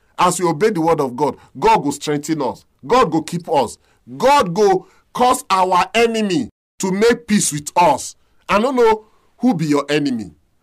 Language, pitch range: English, 155-230 Hz